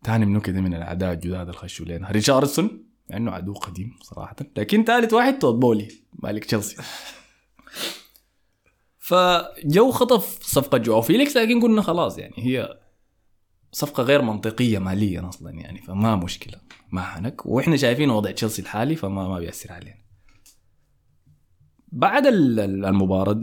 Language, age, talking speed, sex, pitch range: Arabic, 20-39, 125 wpm, male, 95-125 Hz